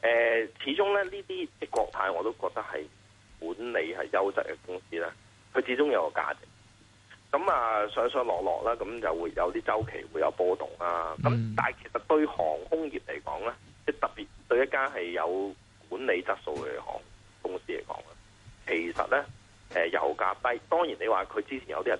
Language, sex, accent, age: Chinese, male, native, 30-49